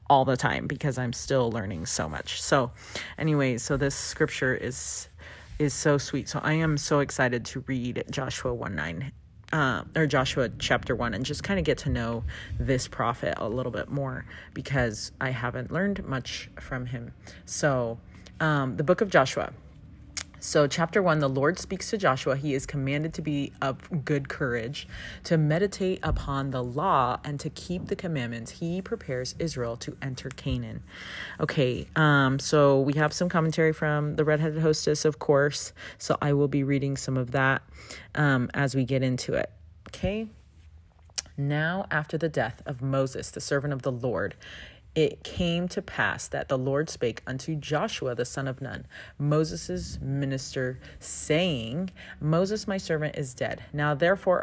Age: 30-49